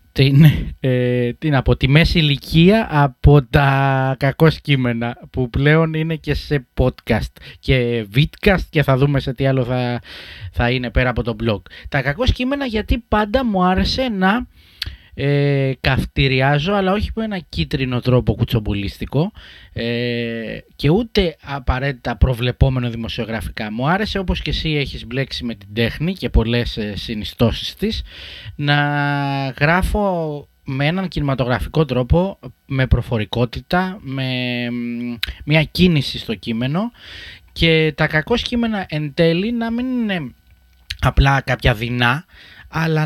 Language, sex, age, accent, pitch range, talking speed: Greek, male, 20-39, native, 120-165 Hz, 120 wpm